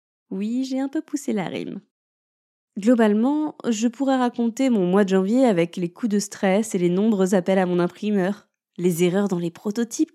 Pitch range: 195-245 Hz